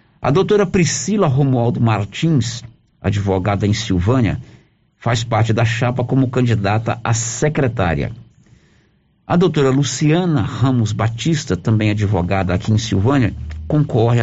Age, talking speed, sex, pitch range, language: 50-69, 115 wpm, male, 105-130 Hz, Portuguese